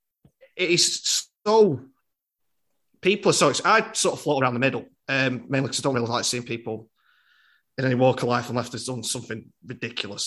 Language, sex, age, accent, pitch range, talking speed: English, male, 20-39, British, 120-150 Hz, 185 wpm